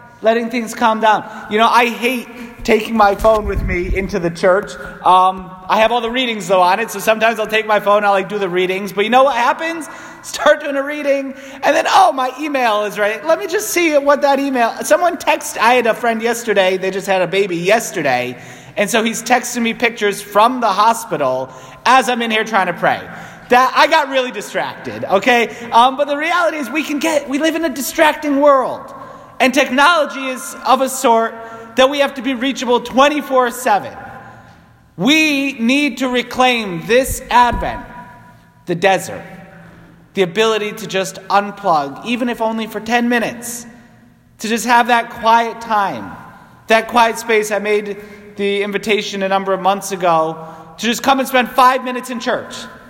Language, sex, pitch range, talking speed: English, male, 205-265 Hz, 190 wpm